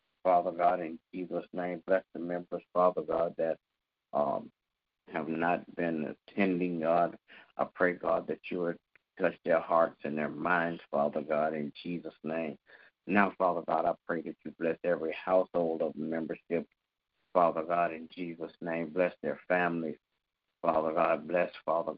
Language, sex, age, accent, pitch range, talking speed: English, male, 50-69, American, 80-90 Hz, 160 wpm